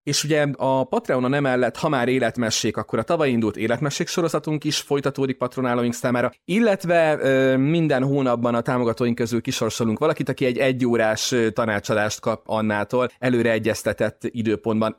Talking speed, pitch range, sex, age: 145 wpm, 110-135 Hz, male, 30-49